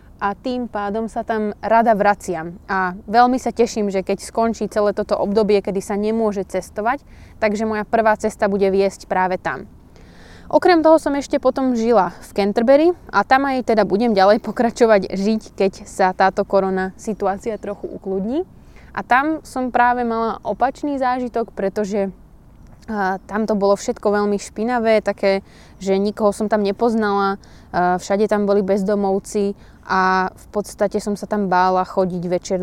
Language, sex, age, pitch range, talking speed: Slovak, female, 20-39, 195-230 Hz, 155 wpm